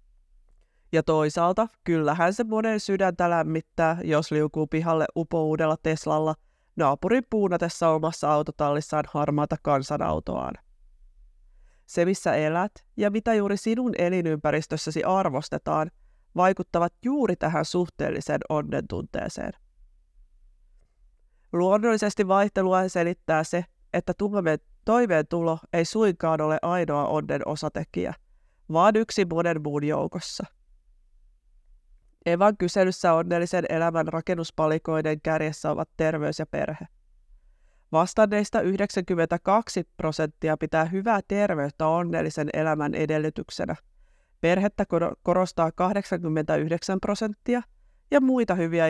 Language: Finnish